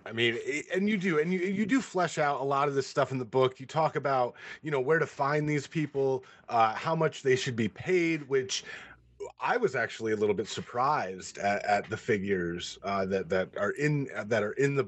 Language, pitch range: English, 120-160 Hz